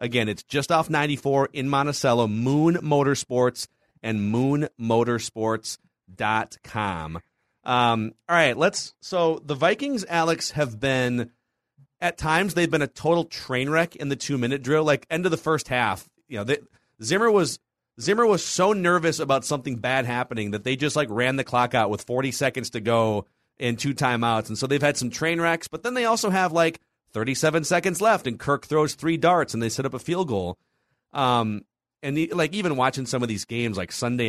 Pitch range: 115-155 Hz